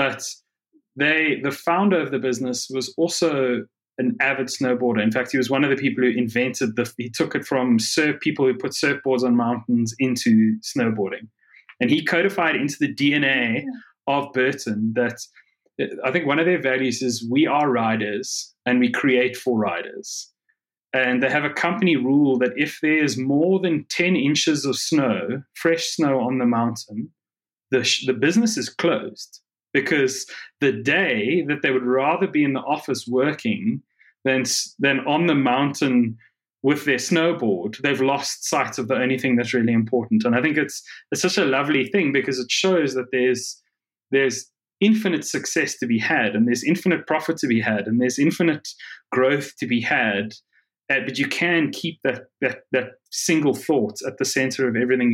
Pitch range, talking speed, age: 125-150 Hz, 180 wpm, 30-49